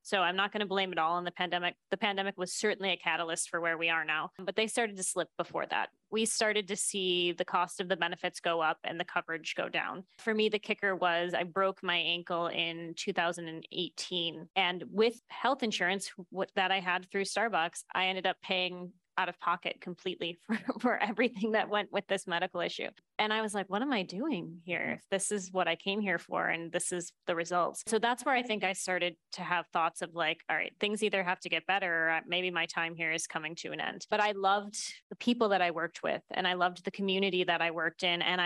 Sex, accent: female, American